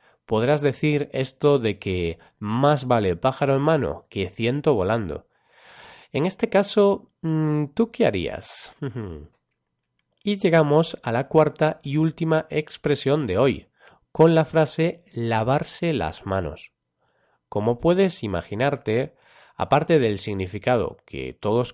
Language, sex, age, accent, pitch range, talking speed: Spanish, male, 30-49, Spanish, 110-155 Hz, 120 wpm